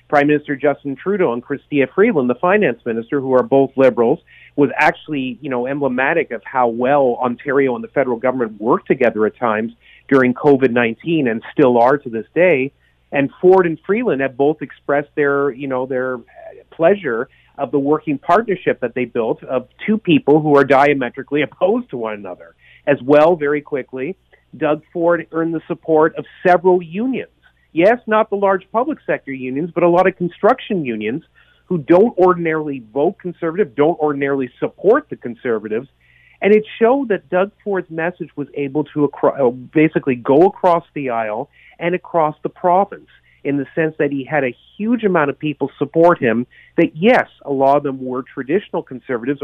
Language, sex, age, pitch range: English, male, 40-59, 130-170 Hz